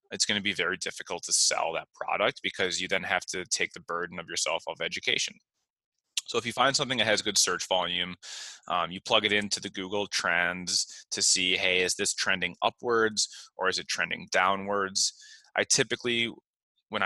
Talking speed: 190 wpm